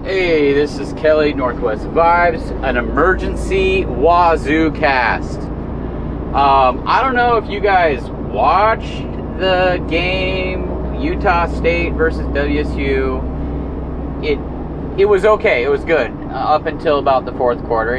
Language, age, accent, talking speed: English, 30-49, American, 125 wpm